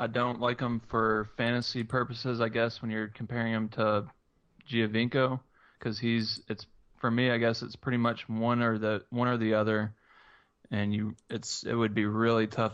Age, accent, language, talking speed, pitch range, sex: 20-39, American, English, 190 wpm, 110-120 Hz, male